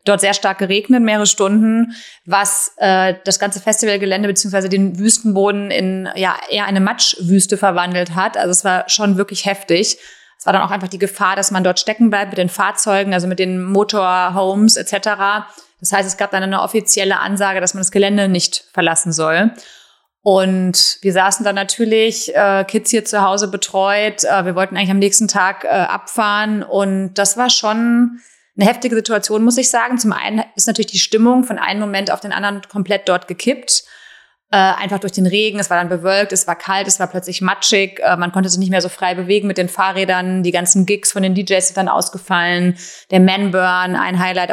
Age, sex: 30-49, female